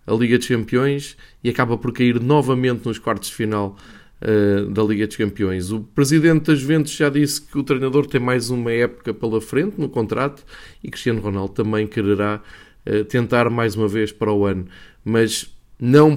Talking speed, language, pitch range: 180 wpm, Portuguese, 105-130 Hz